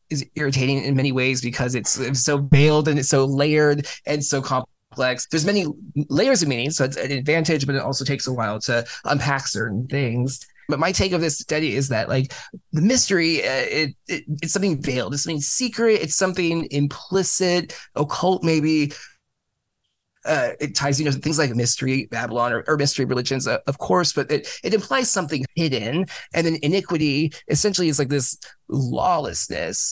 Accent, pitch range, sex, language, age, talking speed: American, 135-170 Hz, male, English, 20-39, 185 wpm